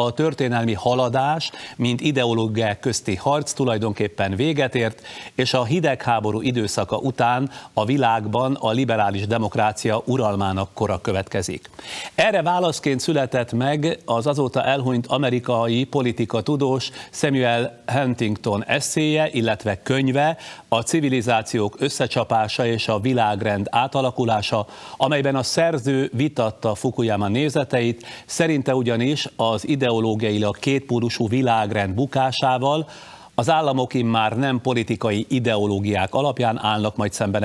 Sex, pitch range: male, 110-135 Hz